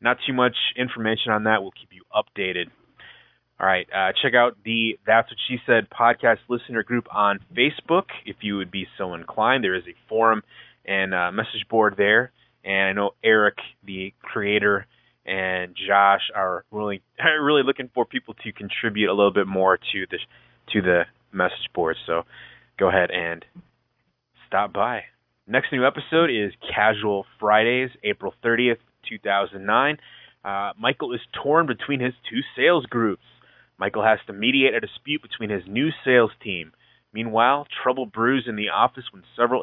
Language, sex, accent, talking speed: English, male, American, 165 wpm